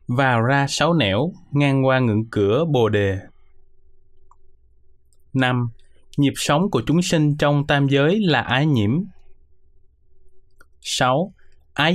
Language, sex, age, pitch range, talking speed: Vietnamese, male, 20-39, 95-145 Hz, 120 wpm